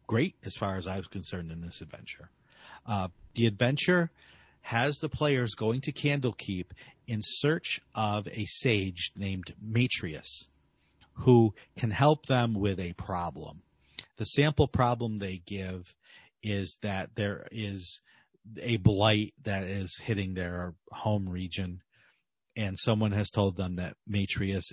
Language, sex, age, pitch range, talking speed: English, male, 40-59, 95-120 Hz, 140 wpm